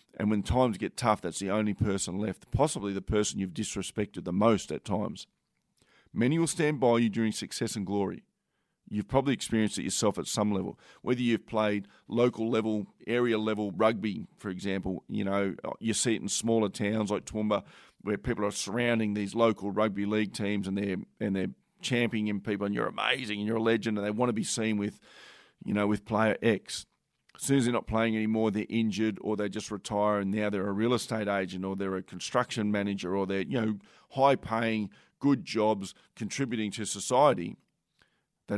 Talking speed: 195 wpm